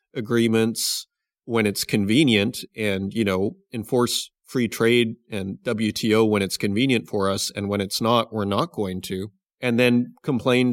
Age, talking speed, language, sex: 30-49, 155 wpm, English, male